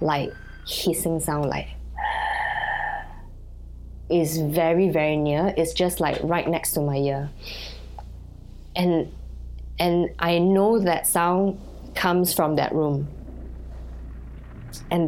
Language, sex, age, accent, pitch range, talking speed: English, female, 20-39, Malaysian, 145-185 Hz, 105 wpm